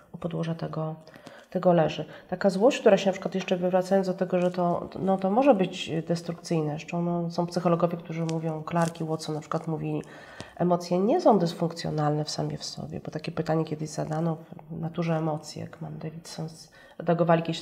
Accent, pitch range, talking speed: native, 160-190 Hz, 175 wpm